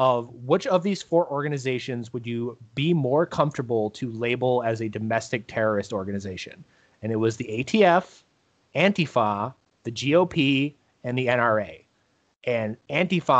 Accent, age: American, 30-49